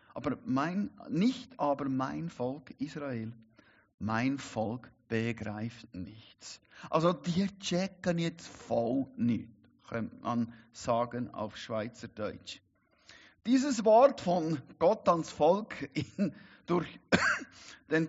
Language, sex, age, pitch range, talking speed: German, male, 50-69, 125-190 Hz, 105 wpm